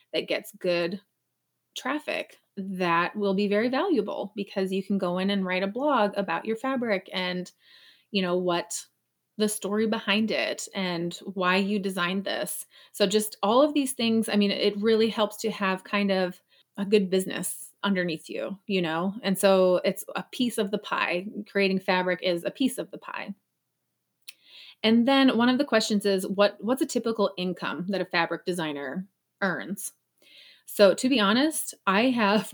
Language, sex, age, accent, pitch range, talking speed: English, female, 30-49, American, 190-230 Hz, 175 wpm